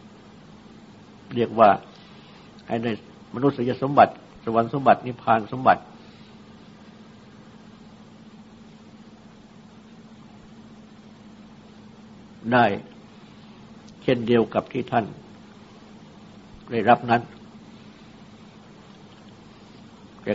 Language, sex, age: Thai, male, 60-79